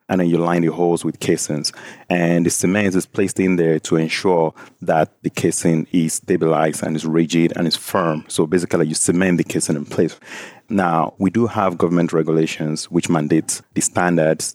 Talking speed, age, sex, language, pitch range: 190 wpm, 30-49, male, English, 80-90 Hz